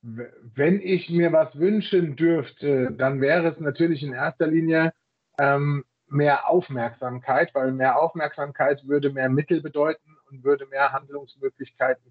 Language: German